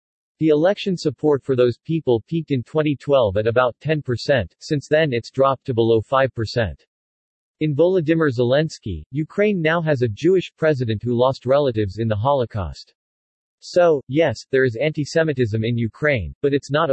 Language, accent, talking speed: English, American, 155 wpm